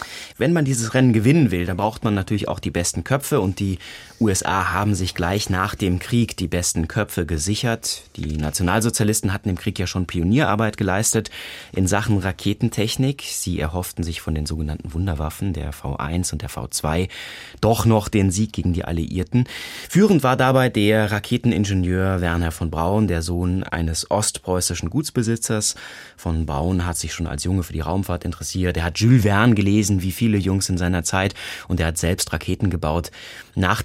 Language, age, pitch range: German, 30-49, 85-110 Hz